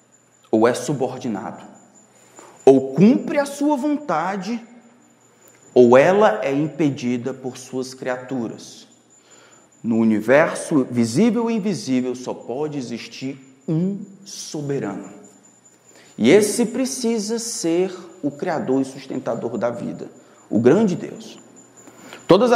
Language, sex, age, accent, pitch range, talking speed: Portuguese, male, 40-59, Brazilian, 130-205 Hz, 105 wpm